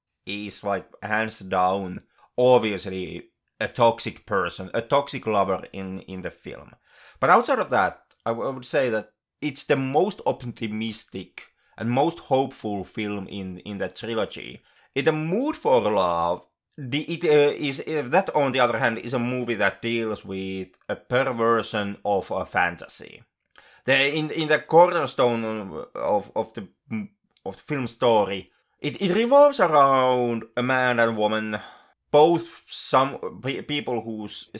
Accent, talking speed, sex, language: Finnish, 155 wpm, male, English